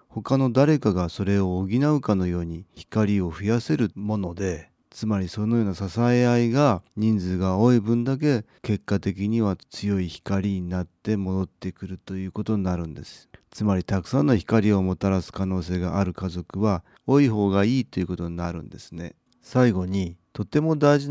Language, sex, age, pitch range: Japanese, male, 40-59, 90-125 Hz